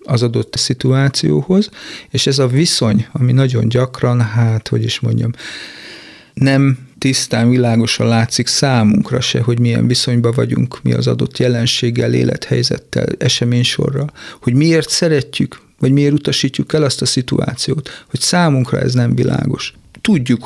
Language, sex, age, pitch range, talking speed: Hungarian, male, 40-59, 115-135 Hz, 135 wpm